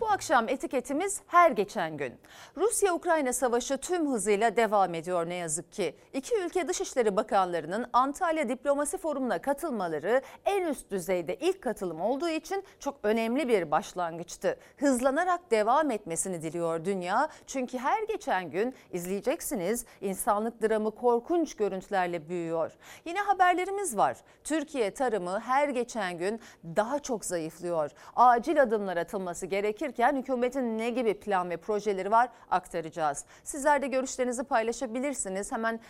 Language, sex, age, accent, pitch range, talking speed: Turkish, female, 40-59, native, 185-305 Hz, 130 wpm